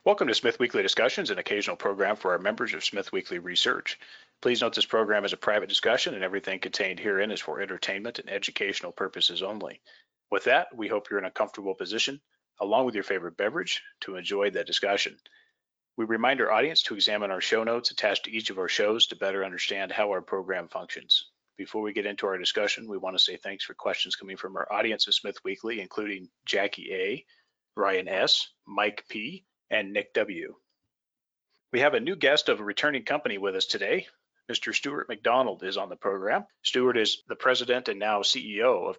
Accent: American